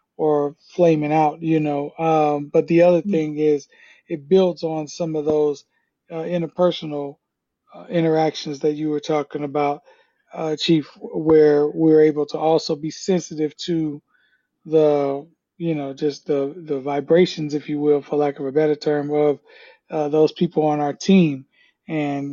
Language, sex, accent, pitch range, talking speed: English, male, American, 150-160 Hz, 160 wpm